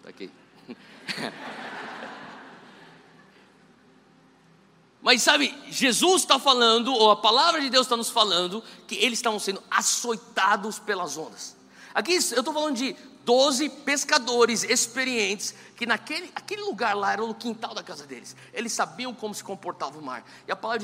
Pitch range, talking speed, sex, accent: 215-285 Hz, 140 wpm, male, Brazilian